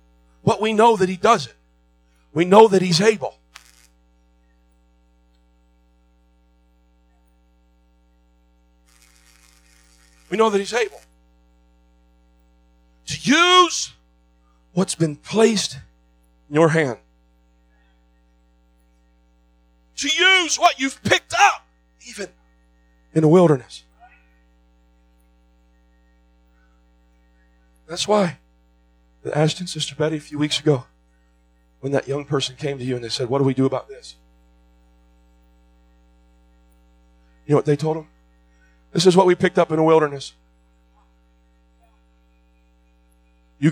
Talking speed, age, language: 105 wpm, 50-69, English